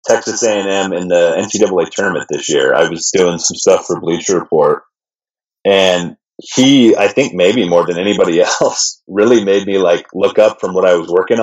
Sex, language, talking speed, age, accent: male, English, 190 wpm, 30-49, American